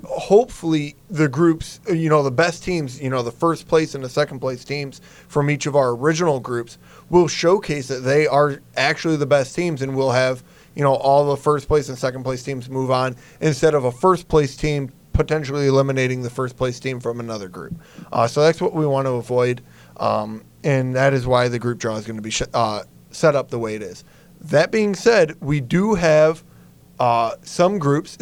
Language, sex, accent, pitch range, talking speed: English, male, American, 130-165 Hz, 210 wpm